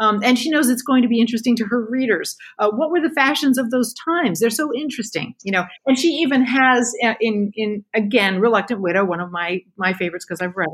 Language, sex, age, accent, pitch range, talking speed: English, female, 50-69, American, 185-240 Hz, 240 wpm